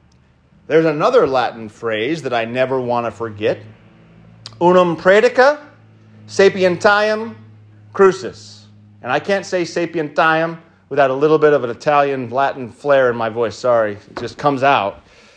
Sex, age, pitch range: male, 30-49, 125-170 Hz